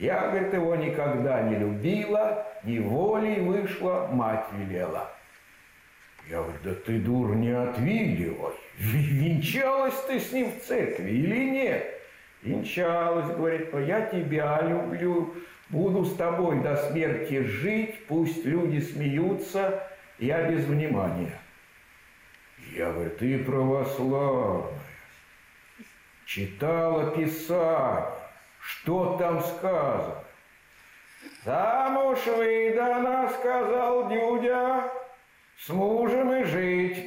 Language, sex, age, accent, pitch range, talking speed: Russian, male, 60-79, native, 145-240 Hz, 100 wpm